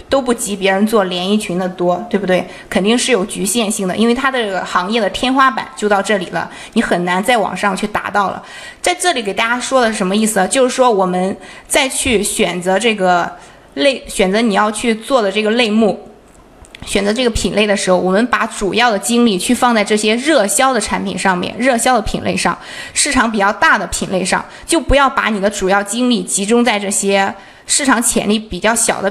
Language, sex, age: Chinese, female, 20-39